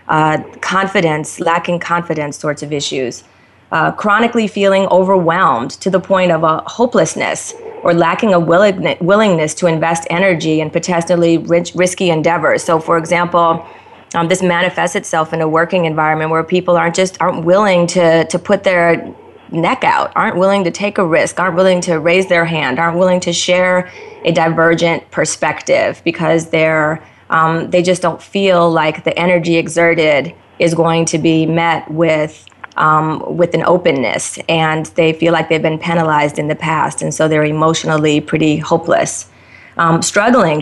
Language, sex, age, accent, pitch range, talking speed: English, female, 30-49, American, 160-175 Hz, 160 wpm